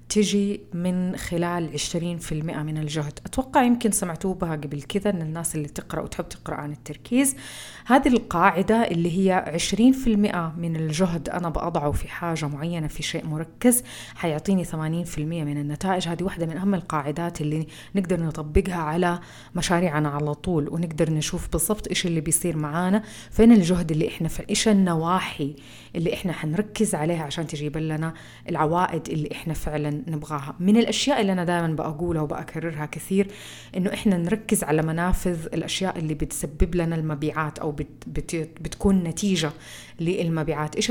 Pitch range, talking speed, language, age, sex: 155-195 Hz, 145 wpm, Arabic, 30-49, female